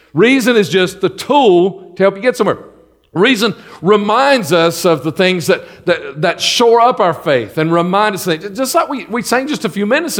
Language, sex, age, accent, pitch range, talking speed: English, male, 50-69, American, 165-225 Hz, 220 wpm